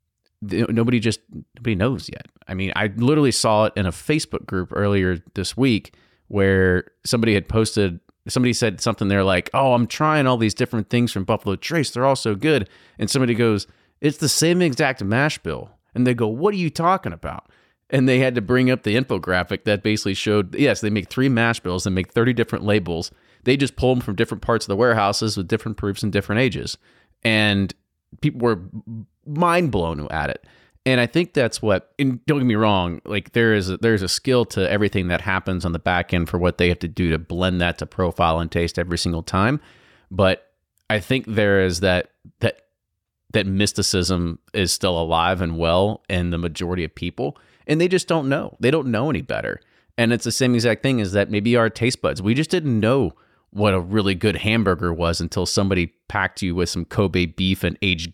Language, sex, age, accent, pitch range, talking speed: English, male, 30-49, American, 90-120 Hz, 215 wpm